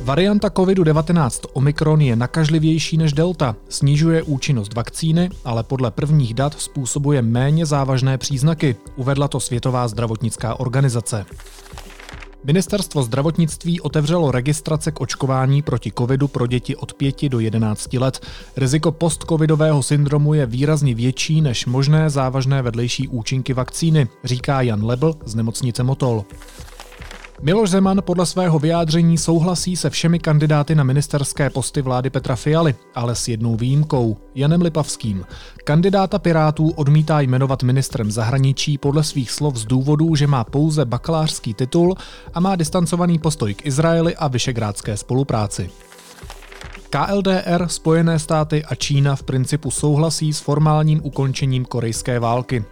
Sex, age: male, 30-49